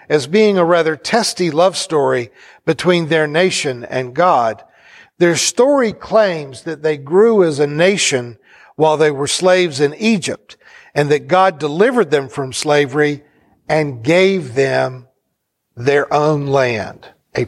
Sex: male